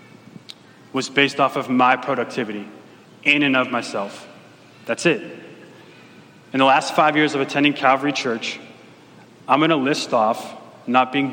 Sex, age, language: male, 30-49, English